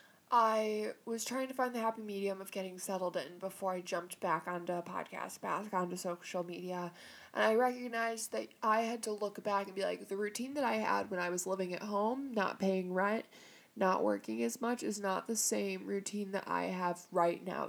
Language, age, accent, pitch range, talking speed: English, 20-39, American, 190-225 Hz, 215 wpm